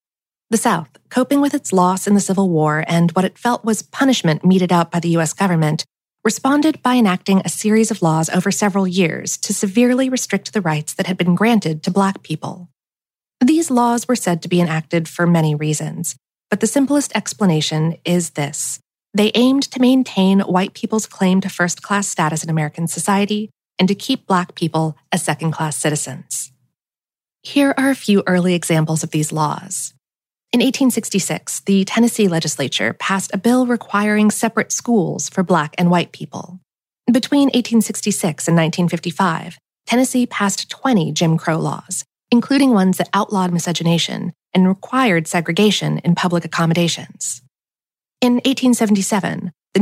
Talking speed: 160 wpm